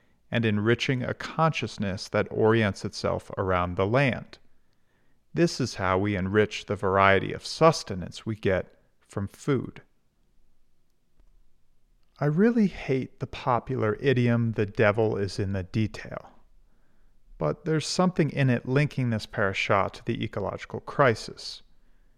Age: 40-59